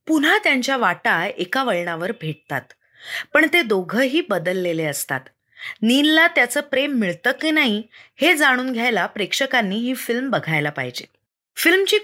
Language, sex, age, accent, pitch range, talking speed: Marathi, female, 30-49, native, 205-290 Hz, 130 wpm